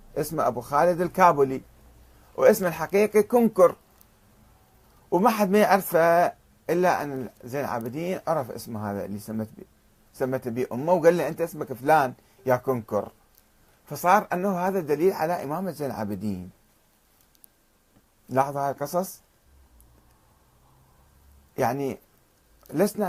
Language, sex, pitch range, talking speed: Arabic, male, 110-175 Hz, 115 wpm